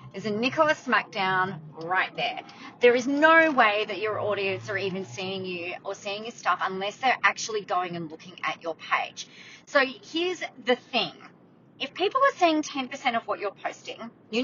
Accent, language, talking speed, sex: Australian, English, 185 wpm, female